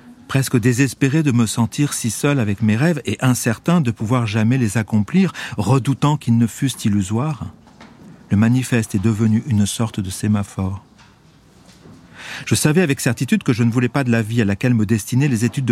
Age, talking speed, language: 40-59, 185 wpm, French